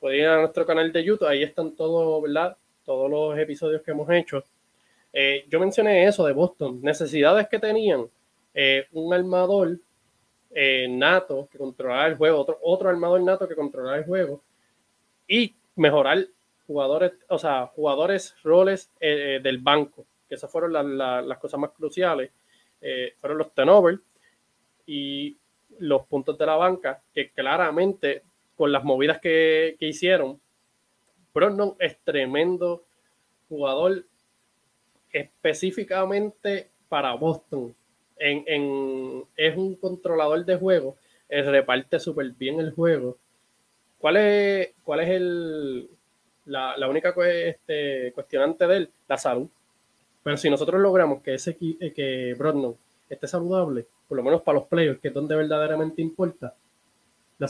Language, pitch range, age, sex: Spanish, 140-185 Hz, 20-39, male